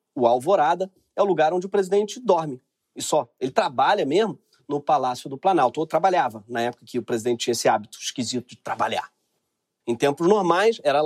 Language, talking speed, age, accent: Portuguese, 190 wpm, 40-59, Brazilian